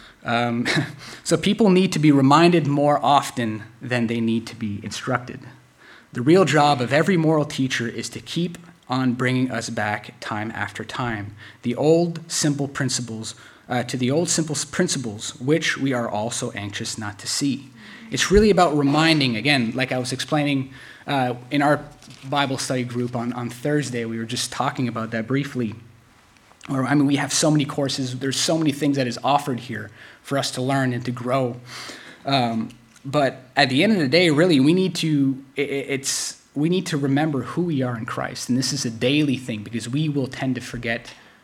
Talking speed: 190 wpm